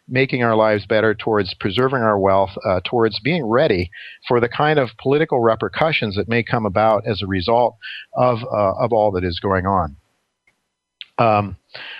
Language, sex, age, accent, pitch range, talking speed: English, male, 50-69, American, 100-125 Hz, 170 wpm